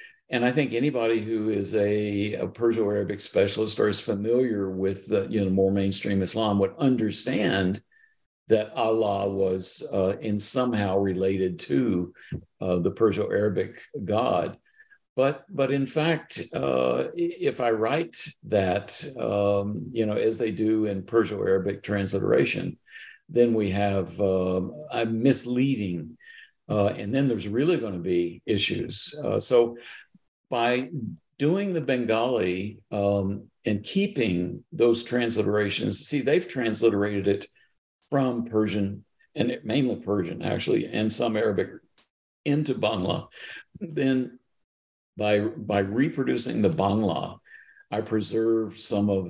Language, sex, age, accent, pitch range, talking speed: English, male, 50-69, American, 100-125 Hz, 125 wpm